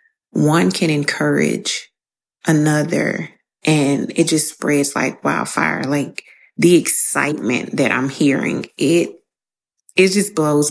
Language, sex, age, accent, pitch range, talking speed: English, female, 30-49, American, 145-175 Hz, 110 wpm